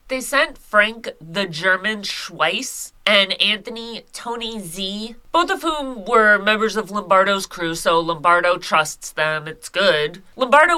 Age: 30-49